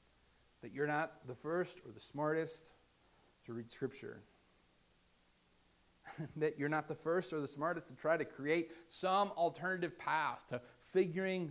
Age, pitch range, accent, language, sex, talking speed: 40-59, 115-185 Hz, American, English, male, 145 wpm